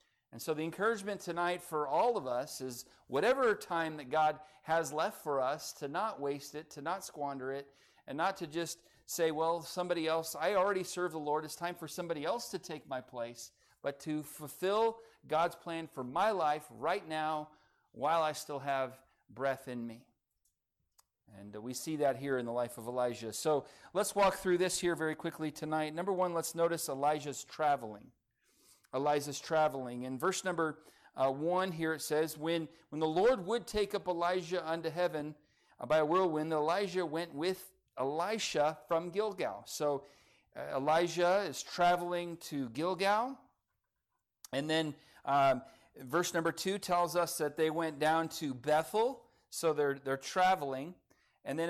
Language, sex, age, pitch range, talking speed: English, male, 40-59, 145-175 Hz, 170 wpm